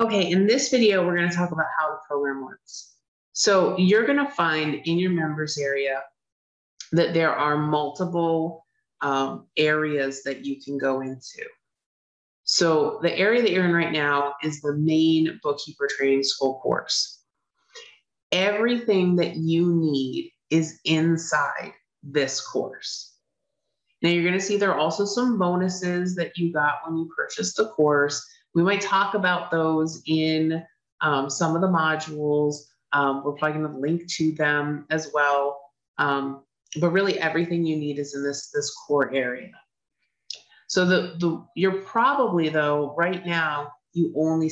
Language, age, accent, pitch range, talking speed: English, 30-49, American, 145-175 Hz, 160 wpm